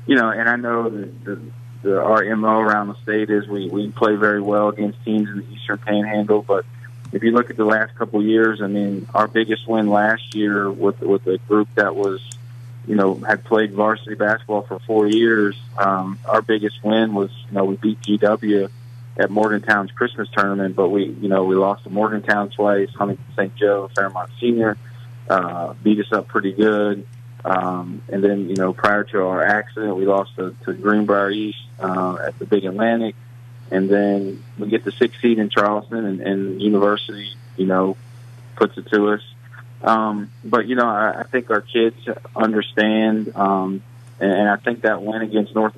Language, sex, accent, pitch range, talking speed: English, male, American, 100-115 Hz, 195 wpm